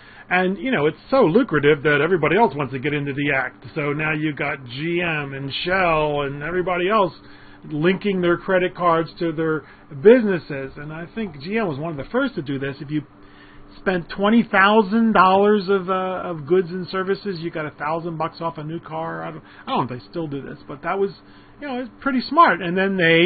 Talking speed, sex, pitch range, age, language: 210 wpm, male, 145-200 Hz, 40-59, English